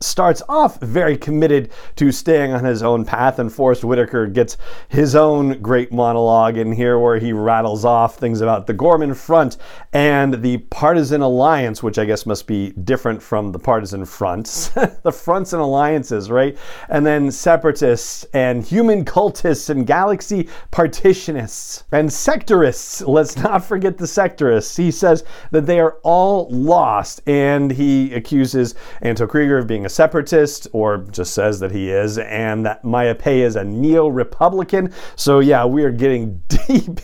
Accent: American